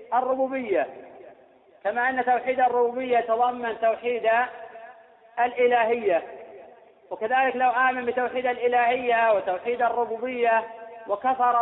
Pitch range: 230-260 Hz